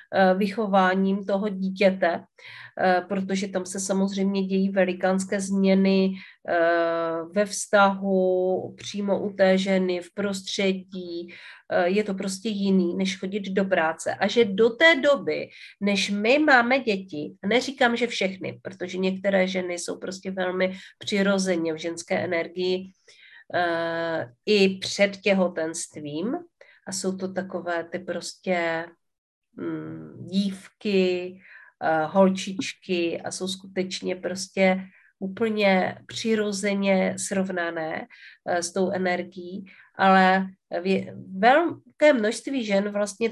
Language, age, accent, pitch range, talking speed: Czech, 40-59, native, 180-200 Hz, 105 wpm